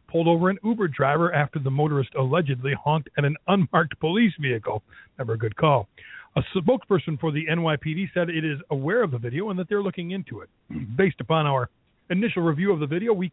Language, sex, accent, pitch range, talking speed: English, male, American, 135-185 Hz, 205 wpm